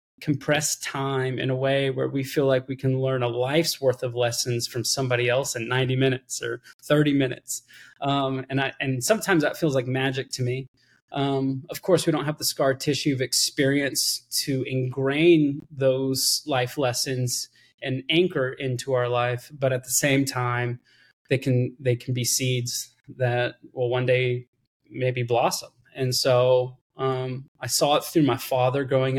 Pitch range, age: 125-140 Hz, 20-39